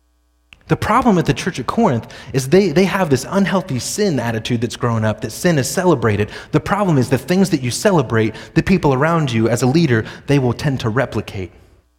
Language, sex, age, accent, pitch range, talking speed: English, male, 30-49, American, 105-145 Hz, 210 wpm